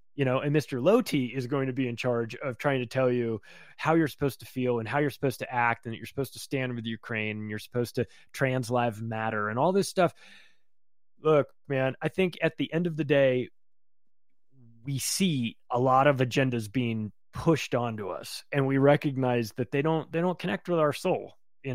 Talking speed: 220 wpm